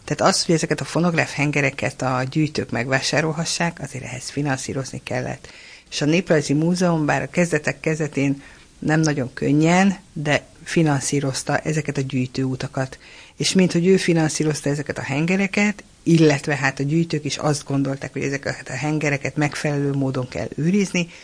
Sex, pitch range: female, 140-170 Hz